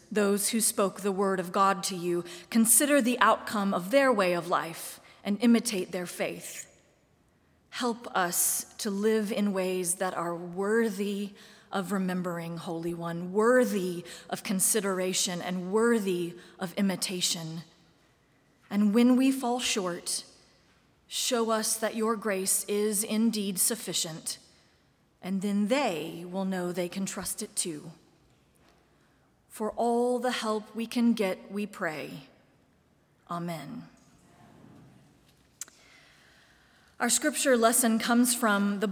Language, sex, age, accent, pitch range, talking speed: English, female, 30-49, American, 185-235 Hz, 125 wpm